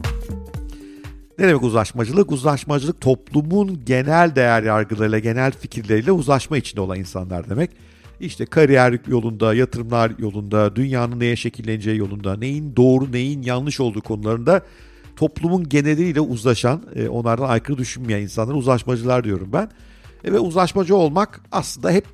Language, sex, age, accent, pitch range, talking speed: Turkish, male, 50-69, native, 105-140 Hz, 120 wpm